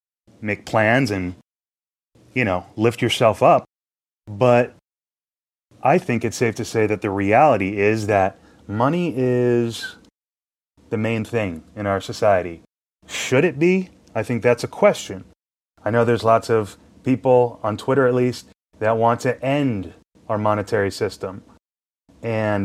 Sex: male